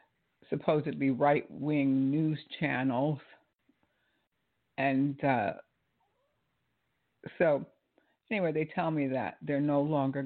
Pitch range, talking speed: 135-175 Hz, 90 wpm